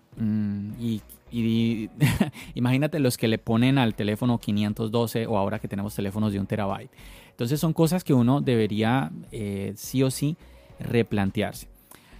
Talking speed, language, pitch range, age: 150 wpm, Spanish, 110-135 Hz, 30-49